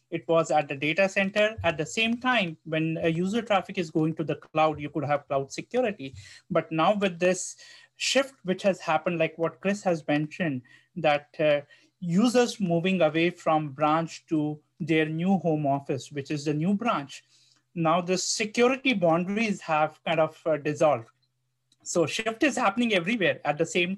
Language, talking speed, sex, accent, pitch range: English, 180 wpm, male, Indian, 155-195 Hz